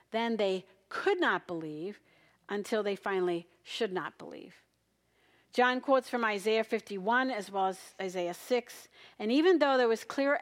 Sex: female